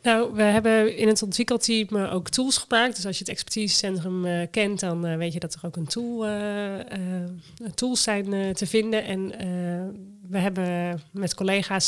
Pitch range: 170-210 Hz